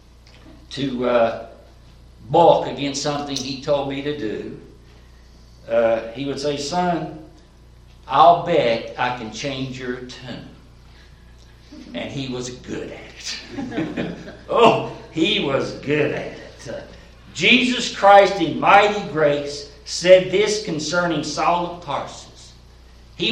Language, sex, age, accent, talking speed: English, male, 60-79, American, 120 wpm